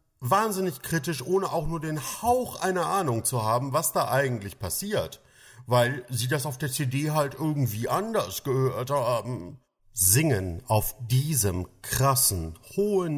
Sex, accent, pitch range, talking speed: male, German, 100-145 Hz, 140 wpm